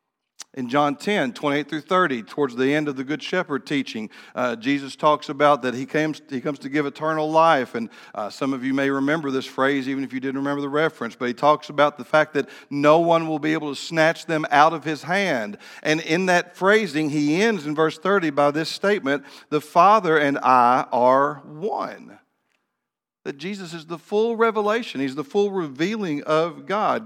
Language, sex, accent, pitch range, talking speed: English, male, American, 140-175 Hz, 205 wpm